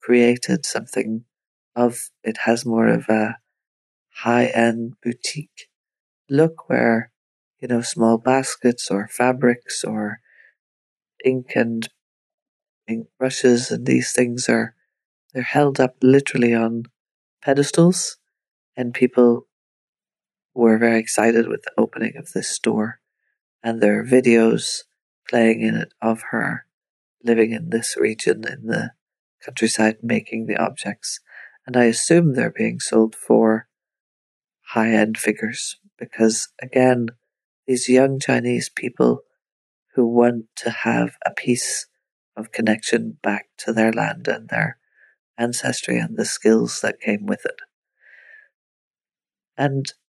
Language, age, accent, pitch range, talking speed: English, 40-59, Irish, 110-130 Hz, 120 wpm